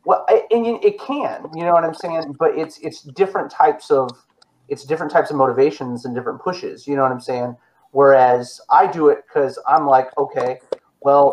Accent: American